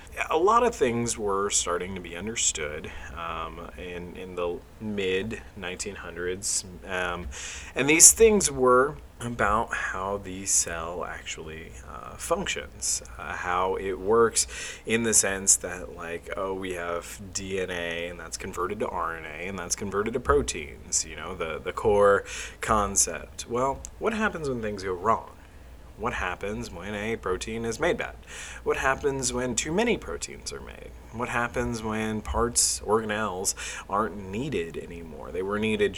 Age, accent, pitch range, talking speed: 30-49, American, 90-120 Hz, 145 wpm